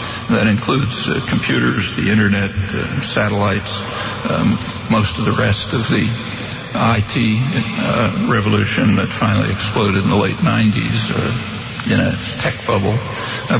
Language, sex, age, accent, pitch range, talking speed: English, male, 60-79, American, 105-120 Hz, 135 wpm